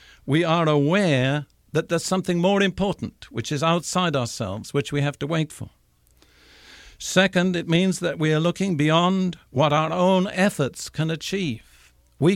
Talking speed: 160 wpm